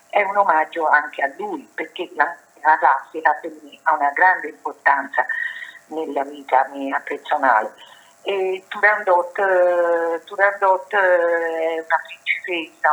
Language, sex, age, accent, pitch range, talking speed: Italian, female, 50-69, native, 155-190 Hz, 120 wpm